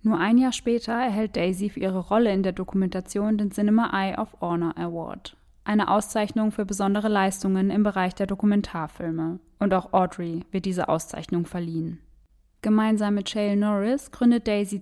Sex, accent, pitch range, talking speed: female, German, 185-215 Hz, 160 wpm